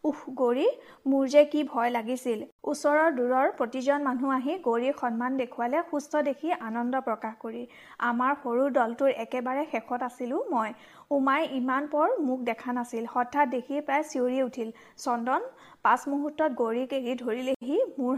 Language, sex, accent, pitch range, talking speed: Hindi, female, native, 245-290 Hz, 140 wpm